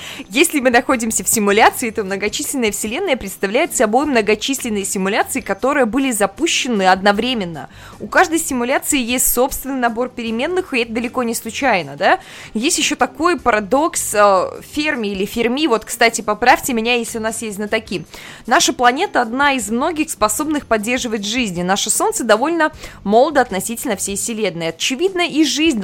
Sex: female